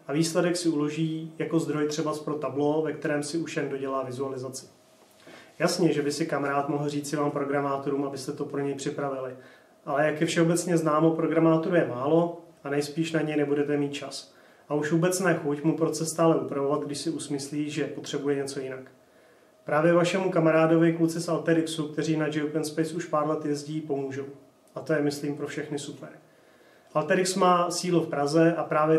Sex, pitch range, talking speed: male, 145-165 Hz, 185 wpm